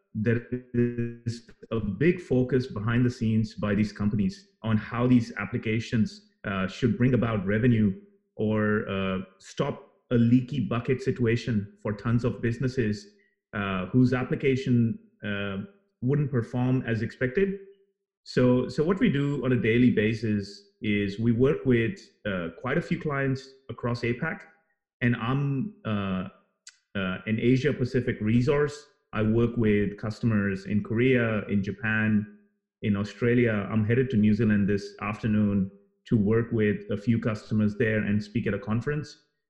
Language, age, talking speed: English, 30-49, 145 wpm